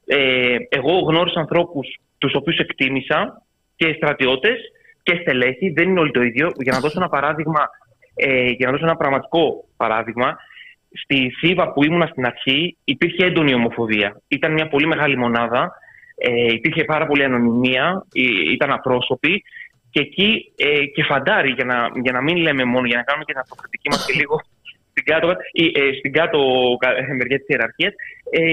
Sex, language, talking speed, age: male, Greek, 160 wpm, 20-39